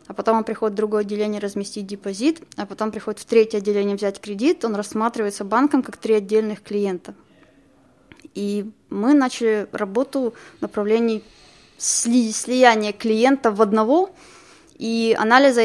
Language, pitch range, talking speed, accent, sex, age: Ukrainian, 205-240 Hz, 140 wpm, native, female, 20-39